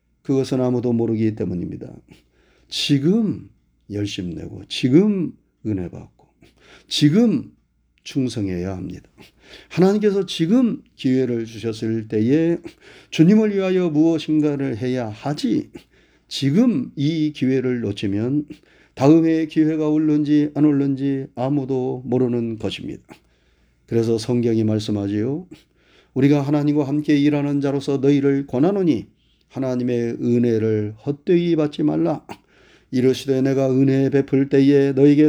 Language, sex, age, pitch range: Korean, male, 40-59, 110-155 Hz